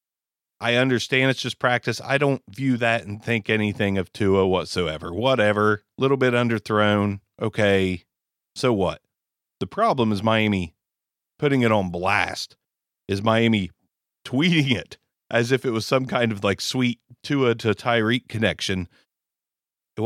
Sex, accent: male, American